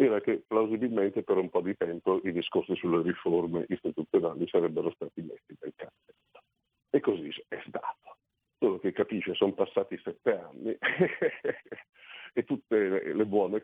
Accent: native